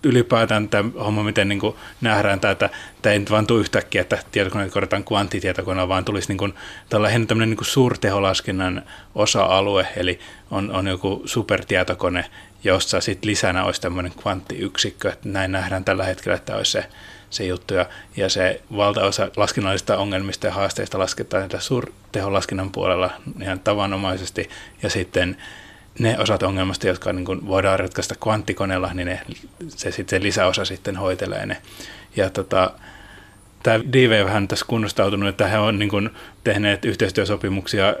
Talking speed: 130 wpm